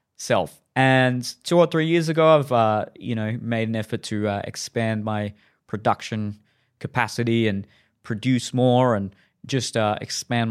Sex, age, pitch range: male, 20-39, 110-130 Hz